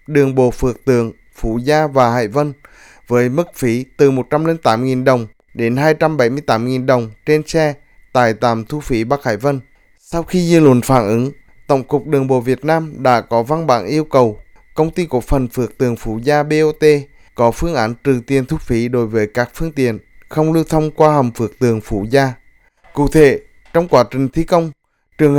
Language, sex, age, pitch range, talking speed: Vietnamese, male, 20-39, 120-150 Hz, 200 wpm